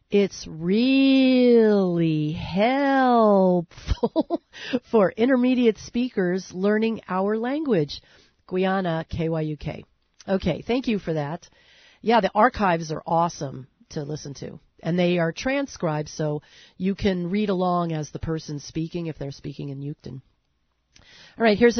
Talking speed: 125 wpm